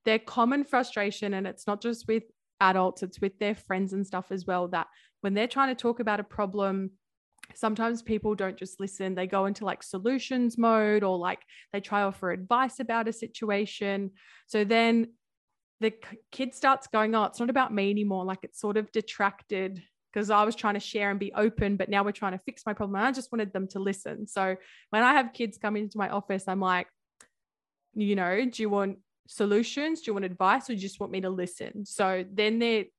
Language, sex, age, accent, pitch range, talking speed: English, female, 20-39, Australian, 190-220 Hz, 215 wpm